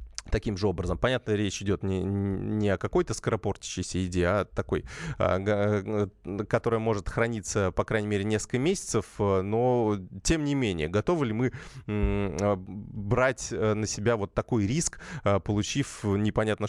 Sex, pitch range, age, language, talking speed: male, 100-125 Hz, 20-39, Russian, 135 wpm